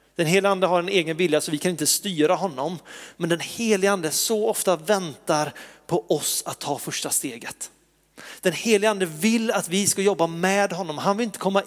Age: 30-49